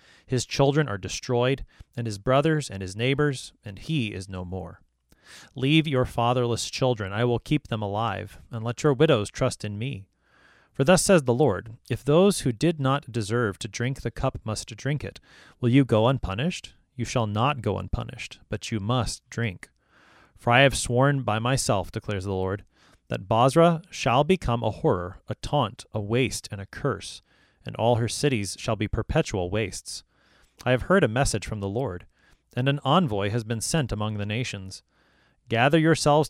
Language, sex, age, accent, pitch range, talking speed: English, male, 30-49, American, 105-135 Hz, 185 wpm